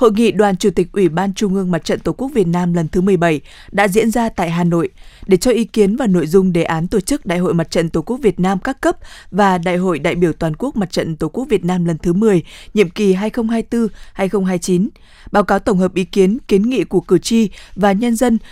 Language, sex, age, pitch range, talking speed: Vietnamese, female, 20-39, 180-220 Hz, 255 wpm